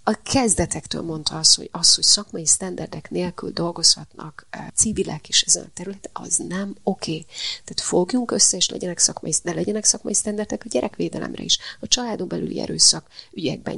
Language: Hungarian